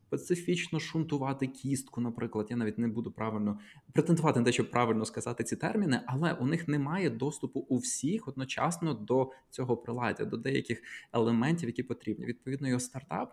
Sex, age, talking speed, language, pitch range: male, 20-39, 160 wpm, Ukrainian, 110-135 Hz